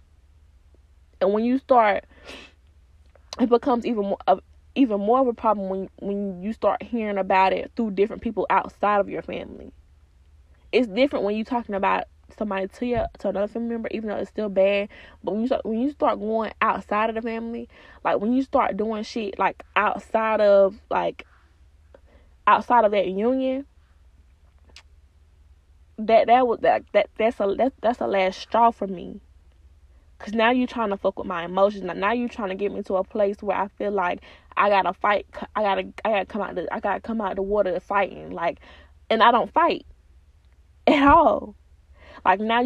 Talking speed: 195 wpm